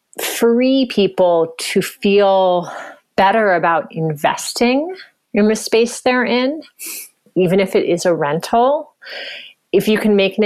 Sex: female